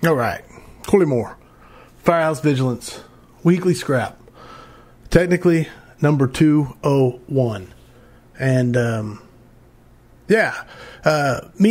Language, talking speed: English, 80 wpm